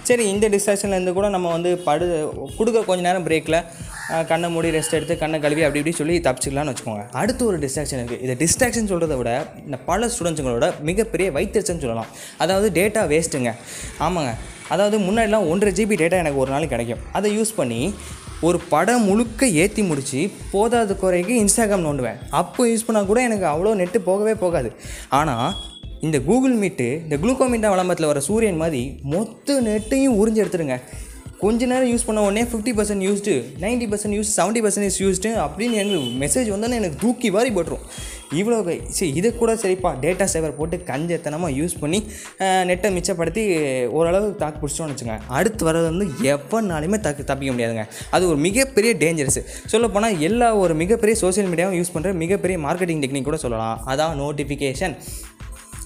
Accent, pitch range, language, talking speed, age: native, 150-215 Hz, Tamil, 160 wpm, 20-39